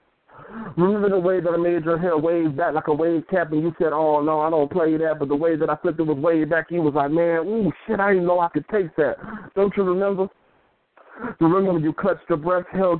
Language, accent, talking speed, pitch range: English, American, 260 wpm, 165-185 Hz